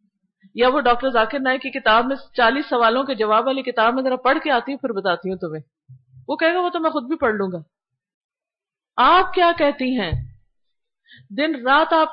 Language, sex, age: Urdu, female, 50-69